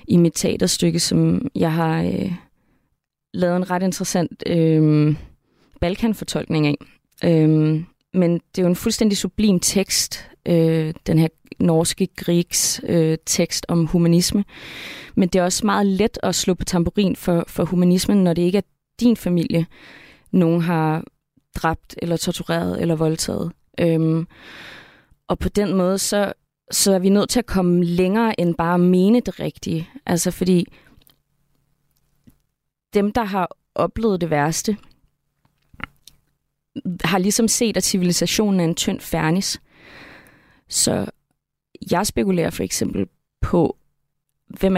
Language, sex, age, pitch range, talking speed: Danish, female, 20-39, 160-190 Hz, 135 wpm